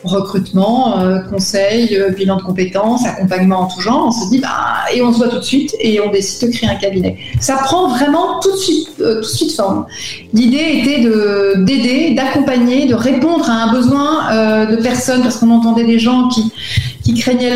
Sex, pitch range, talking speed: female, 210-250 Hz, 185 wpm